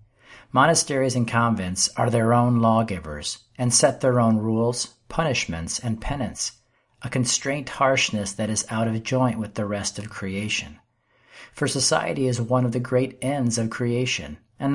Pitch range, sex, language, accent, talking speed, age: 105-125 Hz, male, English, American, 160 wpm, 50-69